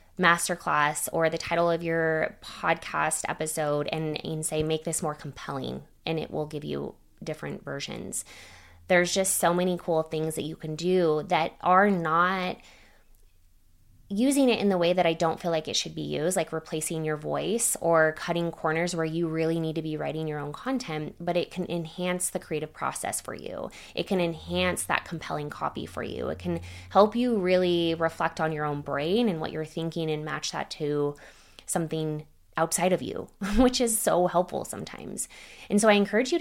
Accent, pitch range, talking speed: American, 155-180 Hz, 190 wpm